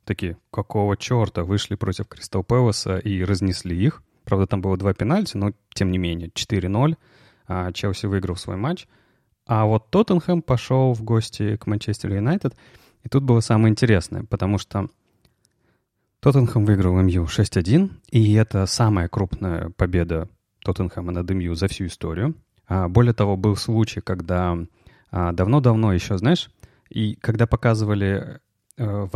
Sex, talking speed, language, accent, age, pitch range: male, 140 wpm, Russian, native, 30-49, 95-120 Hz